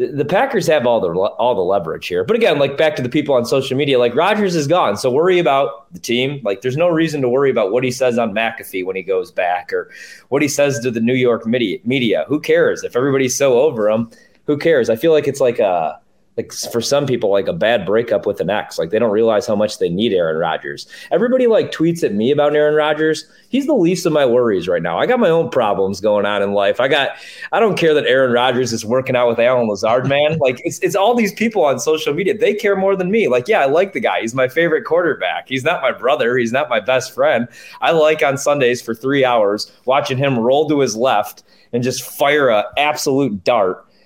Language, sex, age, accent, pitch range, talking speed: English, male, 30-49, American, 120-185 Hz, 245 wpm